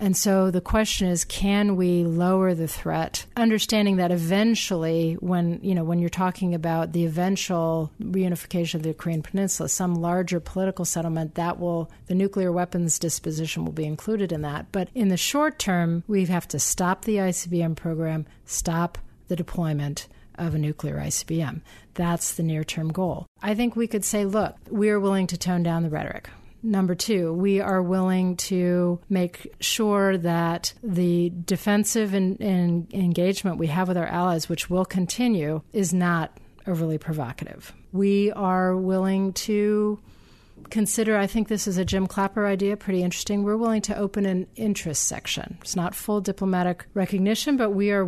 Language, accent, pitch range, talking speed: English, American, 165-200 Hz, 165 wpm